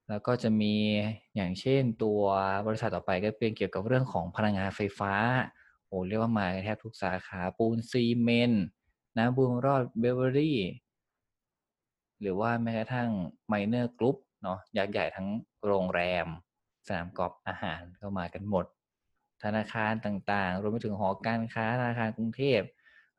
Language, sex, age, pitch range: Thai, male, 20-39, 95-115 Hz